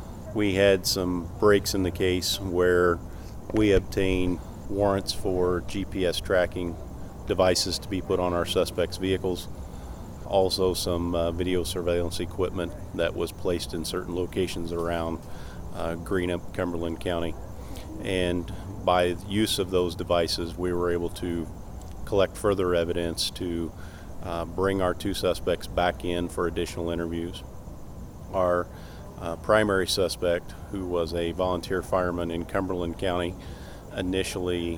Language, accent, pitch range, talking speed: English, American, 85-95 Hz, 135 wpm